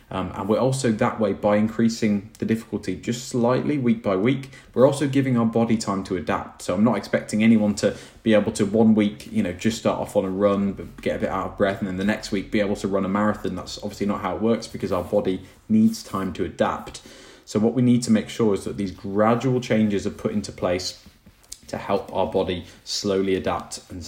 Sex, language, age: male, English, 20-39